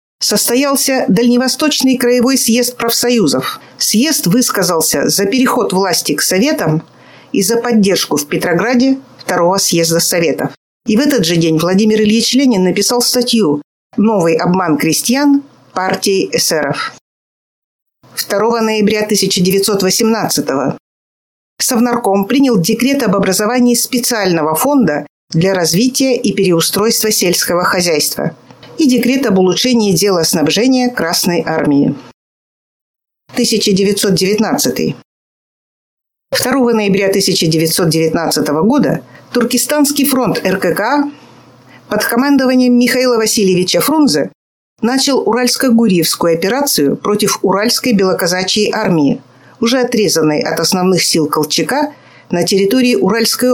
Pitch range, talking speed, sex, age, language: 175-245 Hz, 100 wpm, female, 50-69, Russian